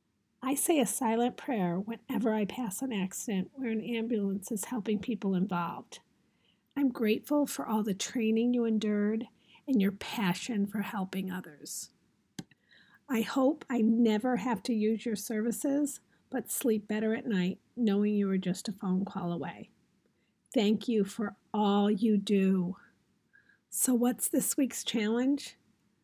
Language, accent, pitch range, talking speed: English, American, 205-240 Hz, 145 wpm